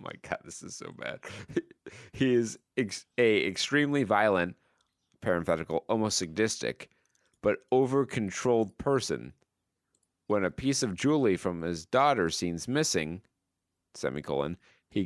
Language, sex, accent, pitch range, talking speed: English, male, American, 100-130 Hz, 120 wpm